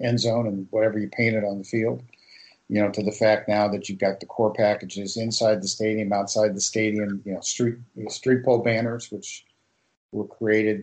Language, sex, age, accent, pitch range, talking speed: English, male, 50-69, American, 100-115 Hz, 210 wpm